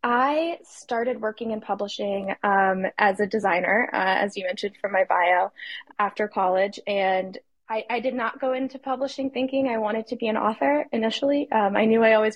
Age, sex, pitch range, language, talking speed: 20-39, female, 190-225 Hz, English, 190 wpm